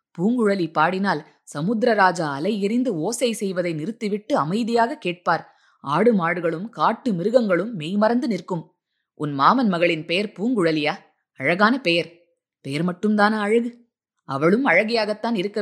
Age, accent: 20-39, native